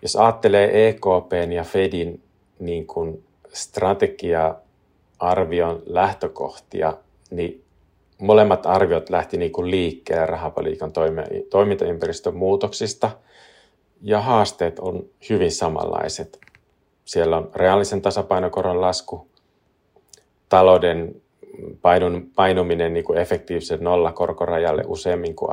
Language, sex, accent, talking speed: Finnish, male, native, 80 wpm